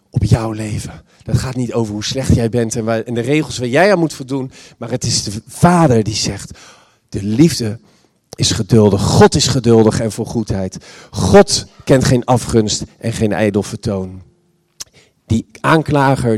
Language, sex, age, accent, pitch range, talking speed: Dutch, male, 50-69, Dutch, 110-140 Hz, 170 wpm